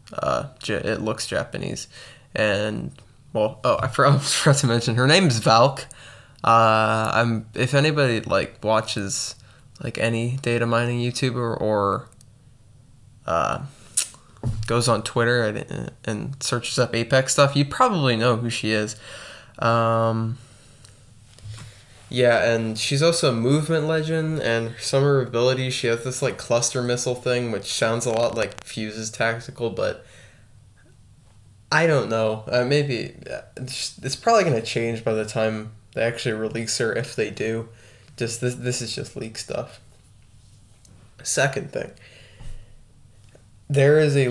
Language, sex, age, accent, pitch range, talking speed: English, male, 10-29, American, 110-135 Hz, 140 wpm